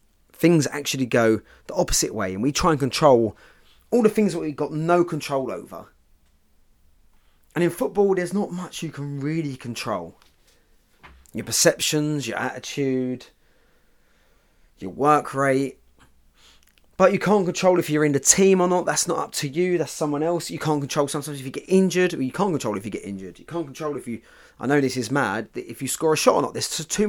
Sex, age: male, 30-49